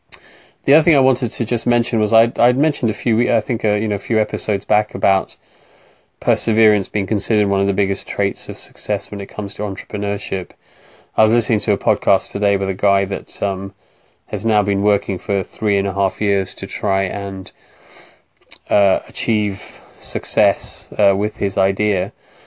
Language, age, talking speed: English, 20-39, 190 wpm